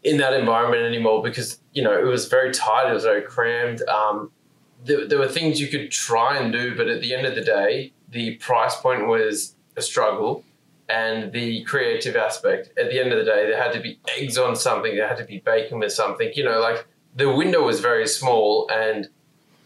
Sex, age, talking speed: male, 20-39, 215 wpm